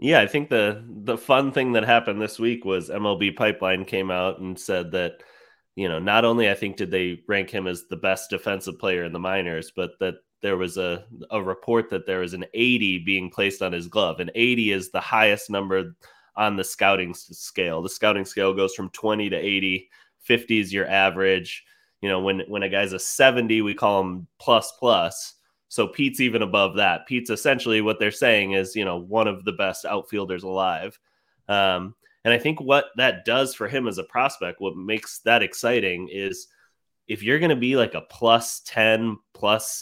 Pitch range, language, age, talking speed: 95-115 Hz, English, 20-39, 205 wpm